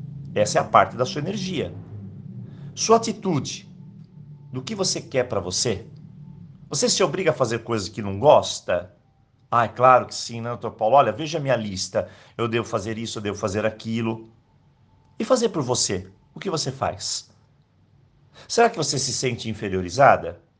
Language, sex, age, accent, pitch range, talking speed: Portuguese, male, 50-69, Brazilian, 110-160 Hz, 170 wpm